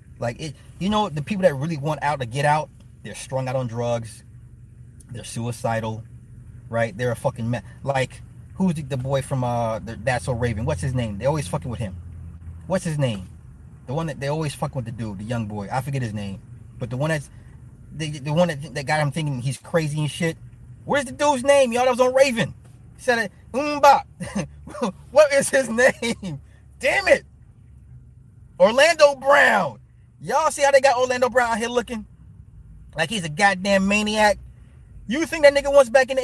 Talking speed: 200 wpm